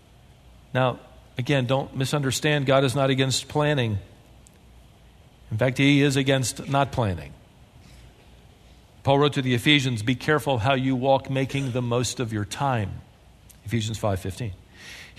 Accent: American